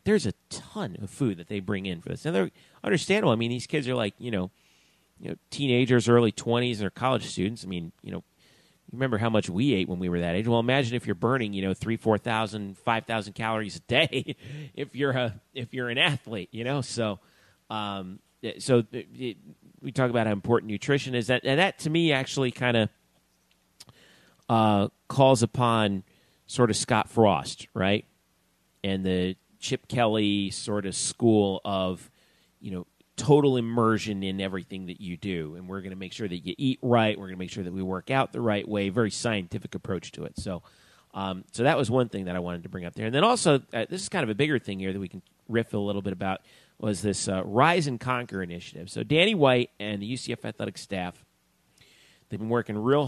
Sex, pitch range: male, 95-125 Hz